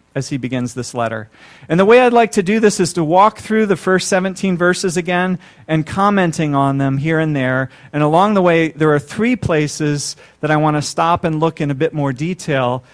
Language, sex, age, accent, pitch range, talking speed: English, male, 40-59, American, 140-185 Hz, 225 wpm